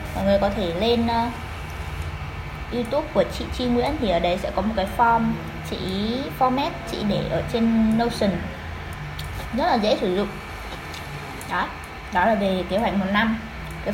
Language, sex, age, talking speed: Vietnamese, female, 10-29, 170 wpm